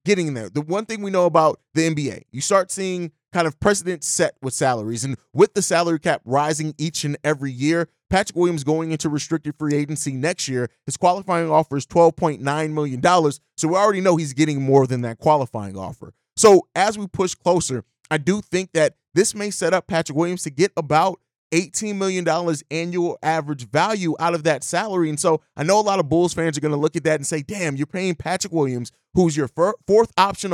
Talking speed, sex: 210 wpm, male